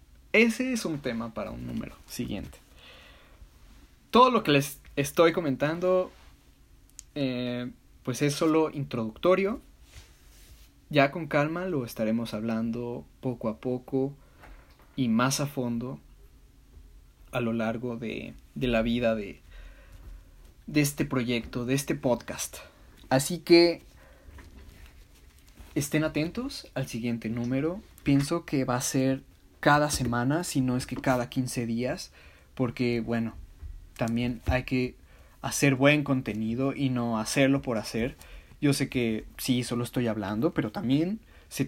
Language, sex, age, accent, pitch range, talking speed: Spanish, male, 20-39, Mexican, 85-140 Hz, 130 wpm